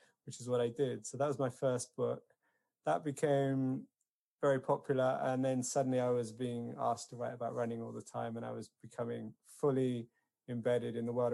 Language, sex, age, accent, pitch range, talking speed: English, male, 20-39, British, 120-140 Hz, 200 wpm